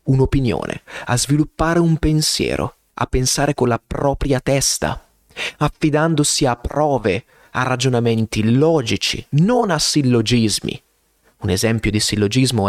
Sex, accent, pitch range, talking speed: male, native, 110-160 Hz, 115 wpm